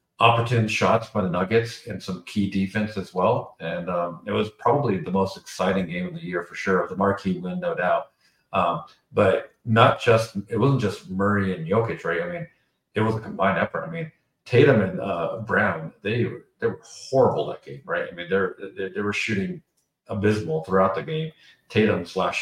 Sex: male